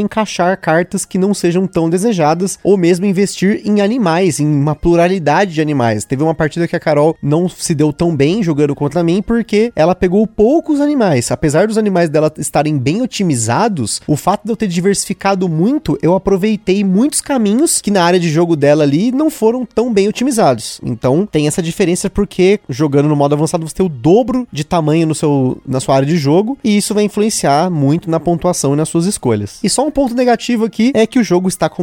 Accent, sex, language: Brazilian, male, Portuguese